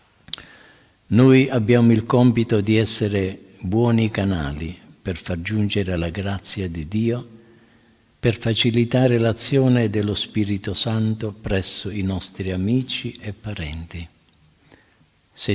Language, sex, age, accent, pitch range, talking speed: Italian, male, 50-69, native, 95-120 Hz, 110 wpm